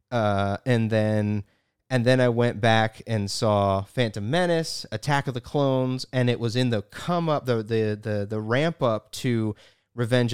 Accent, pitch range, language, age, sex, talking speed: American, 110-140 Hz, English, 30-49, male, 180 wpm